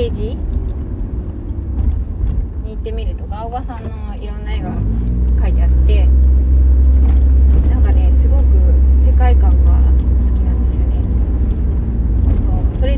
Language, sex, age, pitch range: Japanese, female, 20-39, 65-80 Hz